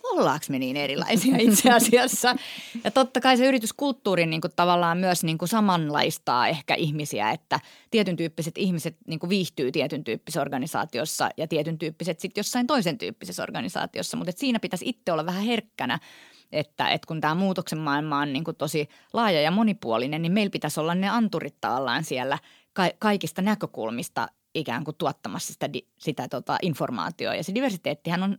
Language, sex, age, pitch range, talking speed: Finnish, female, 30-49, 155-215 Hz, 165 wpm